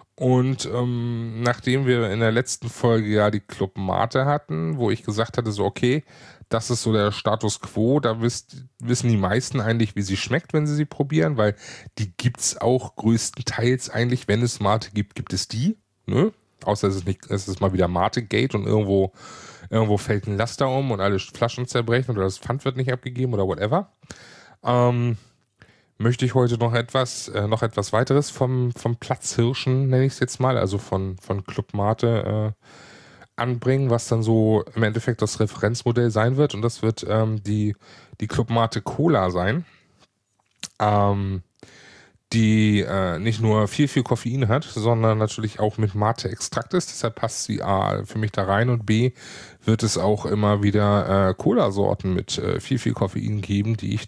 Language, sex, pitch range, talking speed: German, male, 105-125 Hz, 185 wpm